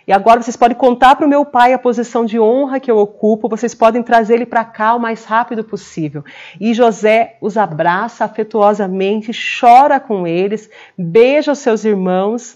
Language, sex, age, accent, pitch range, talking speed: Portuguese, female, 30-49, Brazilian, 195-225 Hz, 180 wpm